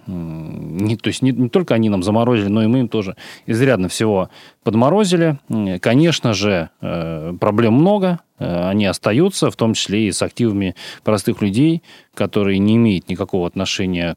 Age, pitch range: 30-49, 95-120 Hz